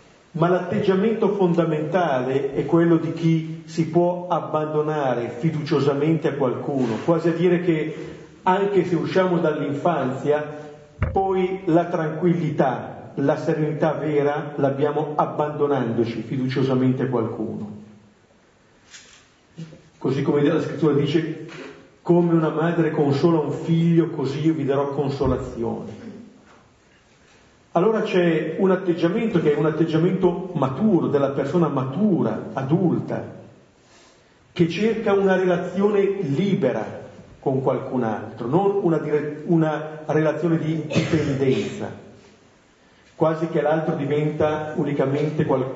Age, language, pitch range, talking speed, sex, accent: 40-59, Italian, 135-170 Hz, 105 wpm, male, native